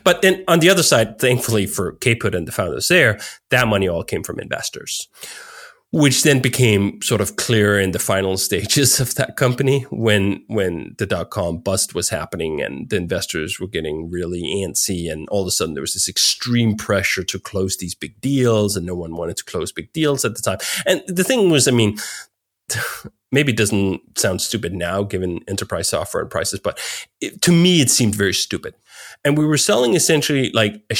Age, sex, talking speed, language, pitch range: 30-49, male, 200 wpm, English, 95-145 Hz